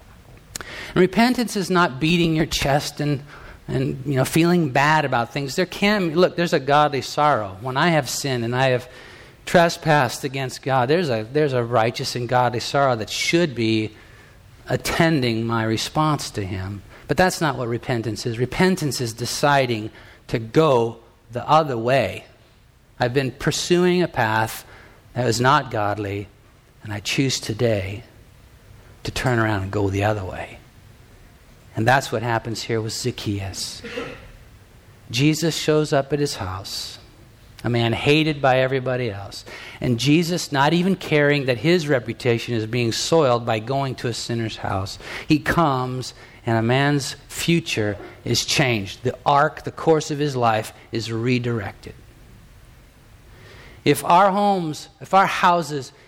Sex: male